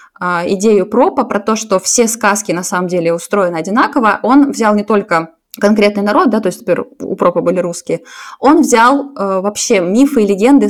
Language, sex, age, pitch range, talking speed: Russian, female, 20-39, 195-255 Hz, 180 wpm